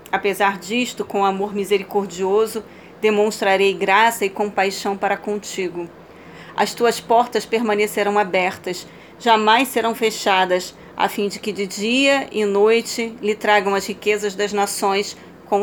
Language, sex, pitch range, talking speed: Portuguese, female, 200-220 Hz, 130 wpm